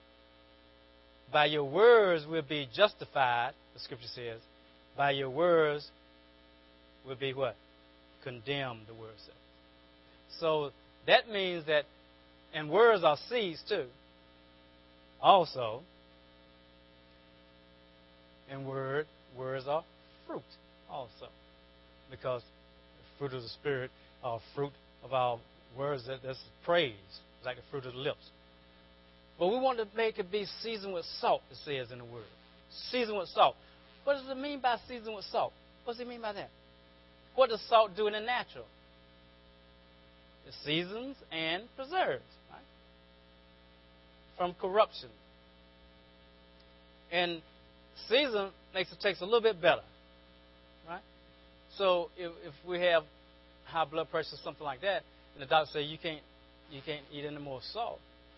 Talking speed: 140 wpm